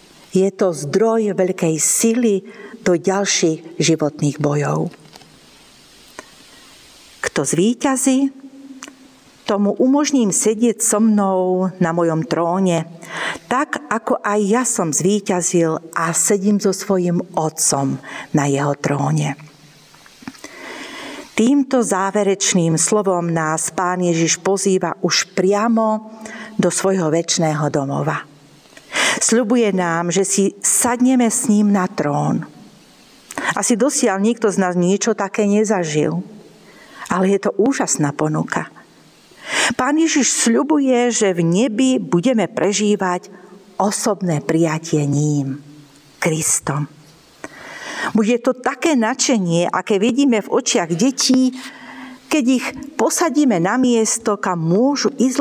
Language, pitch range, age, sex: Slovak, 170-245 Hz, 50-69, female